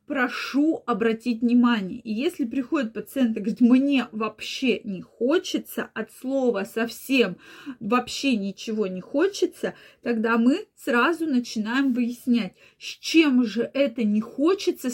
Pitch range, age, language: 220-285 Hz, 20-39, Russian